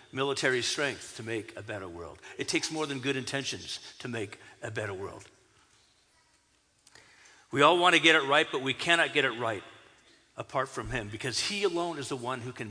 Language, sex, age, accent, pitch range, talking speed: English, male, 50-69, American, 115-150 Hz, 200 wpm